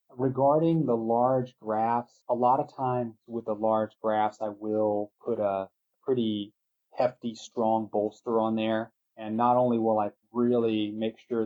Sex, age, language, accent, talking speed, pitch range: male, 30-49, English, American, 155 wpm, 105-120 Hz